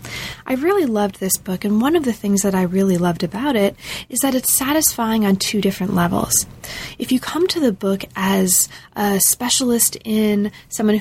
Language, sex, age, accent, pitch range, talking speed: English, female, 20-39, American, 190-230 Hz, 190 wpm